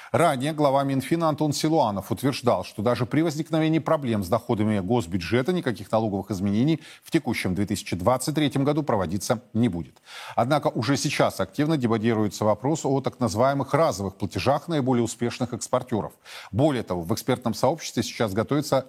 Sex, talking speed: male, 145 wpm